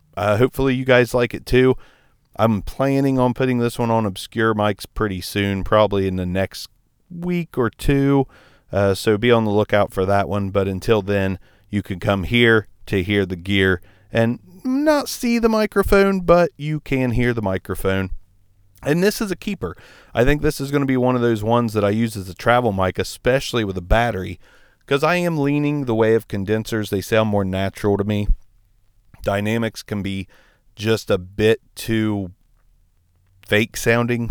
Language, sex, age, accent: English, male, 40-59, American